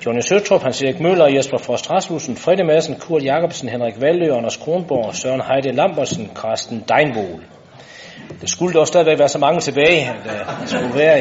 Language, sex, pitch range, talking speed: Danish, male, 115-150 Hz, 170 wpm